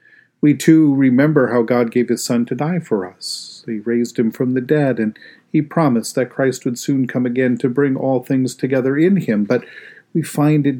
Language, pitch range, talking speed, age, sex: English, 120-150 Hz, 210 wpm, 40-59, male